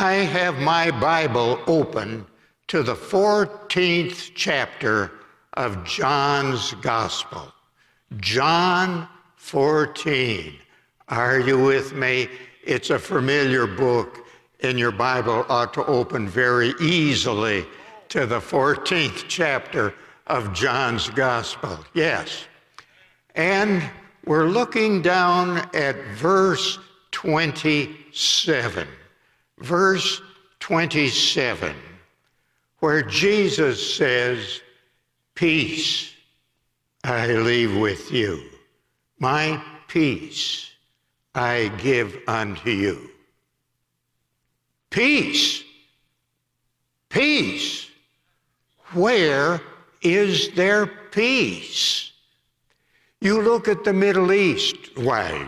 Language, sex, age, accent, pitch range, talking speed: English, male, 60-79, American, 130-190 Hz, 80 wpm